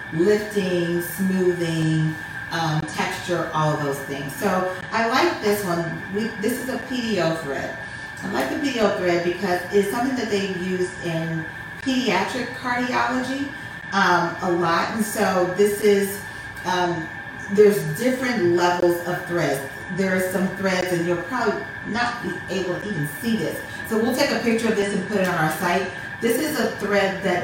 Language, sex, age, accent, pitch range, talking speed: English, female, 40-59, American, 165-210 Hz, 165 wpm